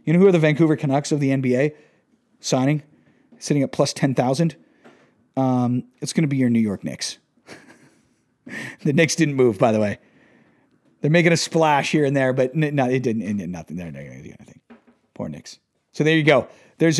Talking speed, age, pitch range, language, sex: 185 wpm, 40-59, 130-160 Hz, English, male